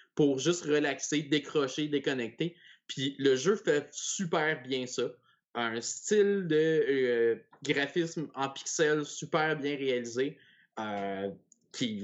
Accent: Canadian